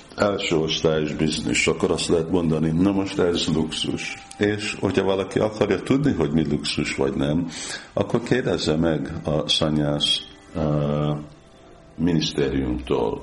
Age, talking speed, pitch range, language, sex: 50-69, 125 wpm, 75-80 Hz, Hungarian, male